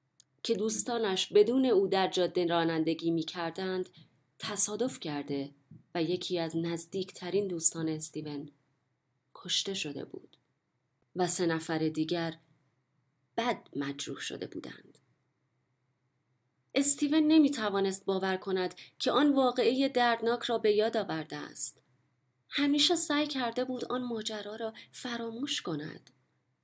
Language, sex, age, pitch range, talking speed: Persian, female, 30-49, 150-210 Hz, 115 wpm